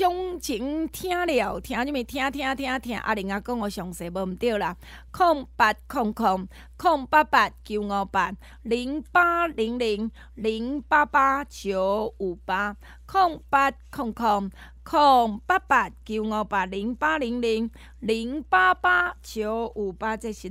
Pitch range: 210-285 Hz